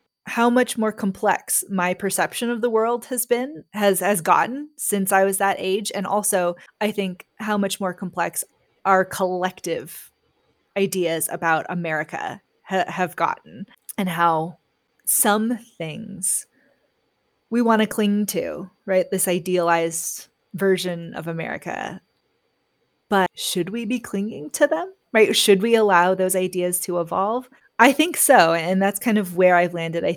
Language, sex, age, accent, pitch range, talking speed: English, female, 20-39, American, 175-215 Hz, 150 wpm